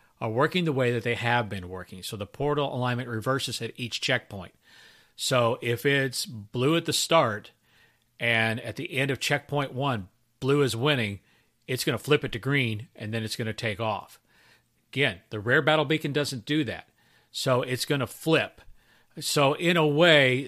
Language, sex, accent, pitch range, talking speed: English, male, American, 115-140 Hz, 190 wpm